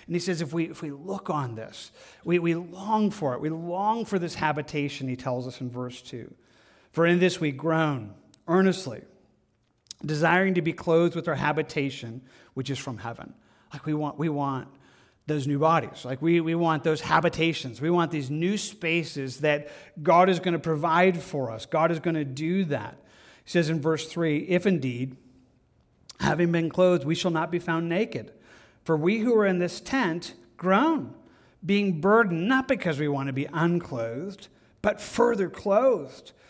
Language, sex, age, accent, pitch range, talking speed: English, male, 40-59, American, 145-180 Hz, 180 wpm